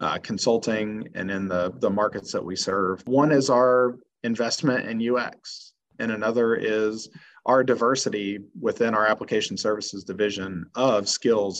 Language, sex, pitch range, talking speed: English, male, 105-125 Hz, 145 wpm